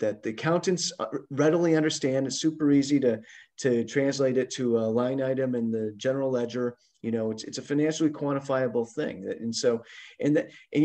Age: 30-49